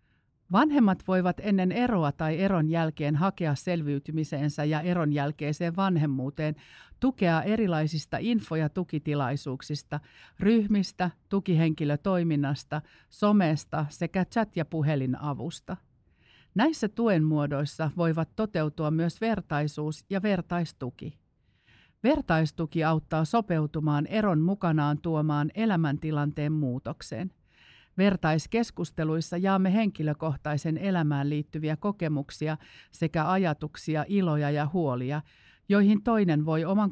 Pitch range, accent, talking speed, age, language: 145-180 Hz, native, 95 wpm, 50-69, Finnish